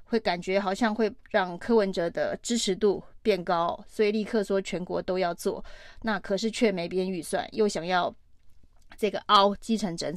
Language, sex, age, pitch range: Chinese, female, 30-49, 185-225 Hz